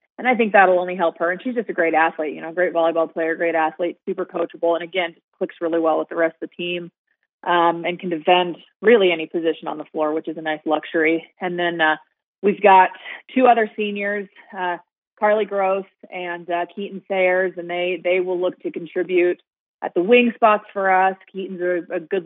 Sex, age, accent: female, 30-49, American